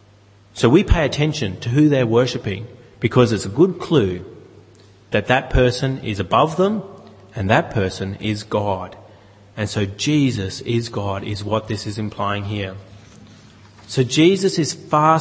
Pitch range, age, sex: 110-155 Hz, 30-49, male